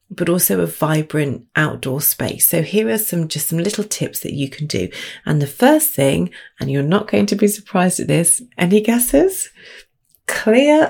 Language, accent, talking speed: English, British, 185 wpm